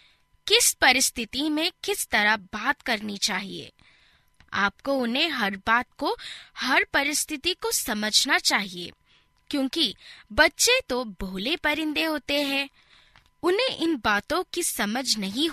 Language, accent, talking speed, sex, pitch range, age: Hindi, native, 120 wpm, female, 210-310 Hz, 20-39